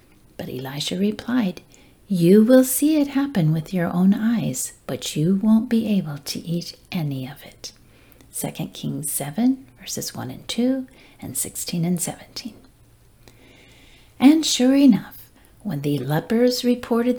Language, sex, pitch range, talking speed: English, female, 150-250 Hz, 140 wpm